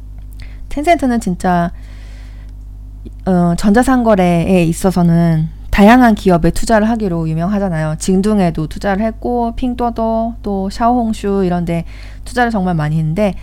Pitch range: 170-245 Hz